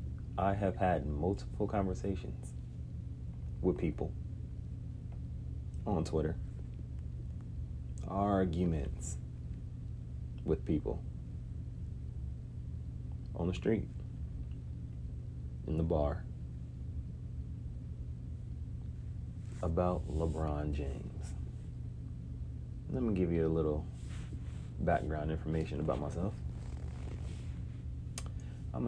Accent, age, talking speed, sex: American, 30-49, 65 wpm, male